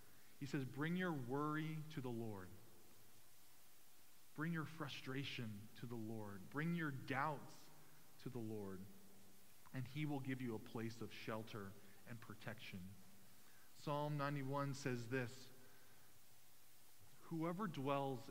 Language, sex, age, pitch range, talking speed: English, male, 20-39, 115-140 Hz, 120 wpm